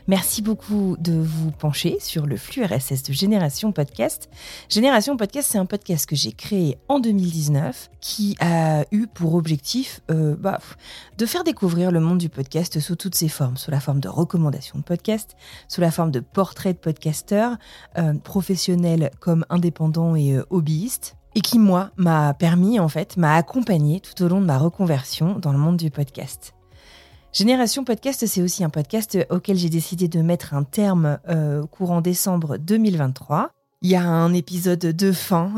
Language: French